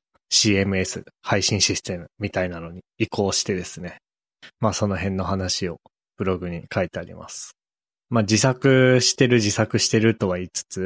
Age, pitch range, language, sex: 20-39, 95-115 Hz, Japanese, male